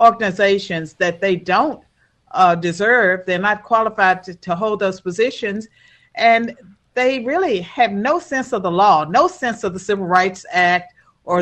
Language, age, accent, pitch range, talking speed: English, 50-69, American, 170-215 Hz, 165 wpm